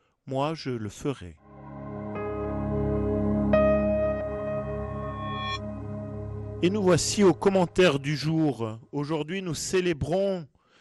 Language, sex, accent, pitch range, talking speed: French, male, French, 115-170 Hz, 80 wpm